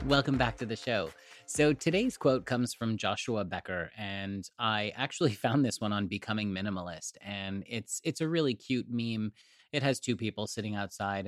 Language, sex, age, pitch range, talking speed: English, male, 30-49, 95-115 Hz, 180 wpm